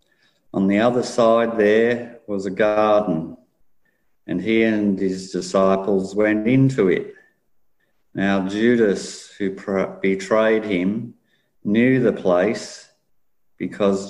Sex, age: male, 50-69